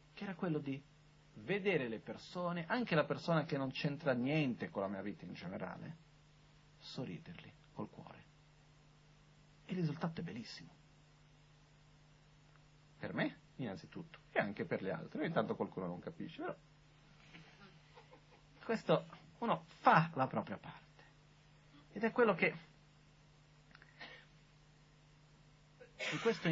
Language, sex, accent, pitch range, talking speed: Italian, male, native, 150-165 Hz, 120 wpm